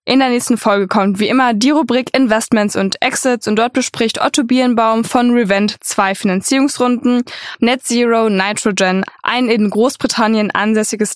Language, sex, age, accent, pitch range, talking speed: German, female, 10-29, German, 205-245 Hz, 150 wpm